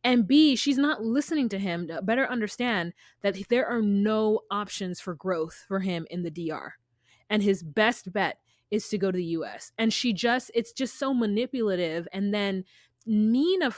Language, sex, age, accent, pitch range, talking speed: English, female, 20-39, American, 180-245 Hz, 185 wpm